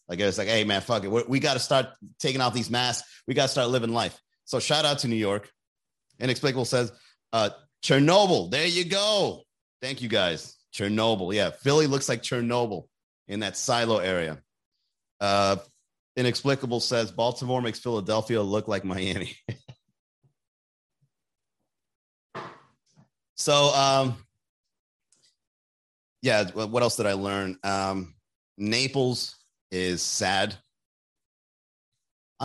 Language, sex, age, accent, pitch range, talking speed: English, male, 30-49, American, 105-135 Hz, 130 wpm